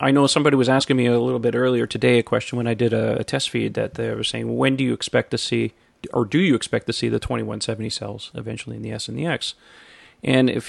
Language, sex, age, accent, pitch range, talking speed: English, male, 30-49, American, 110-125 Hz, 270 wpm